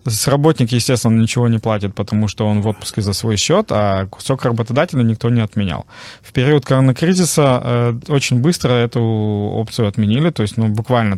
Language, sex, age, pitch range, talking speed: Russian, male, 20-39, 105-120 Hz, 165 wpm